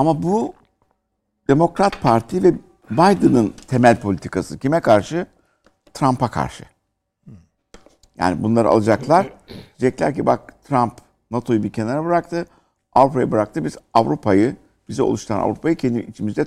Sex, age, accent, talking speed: male, 60-79, native, 115 wpm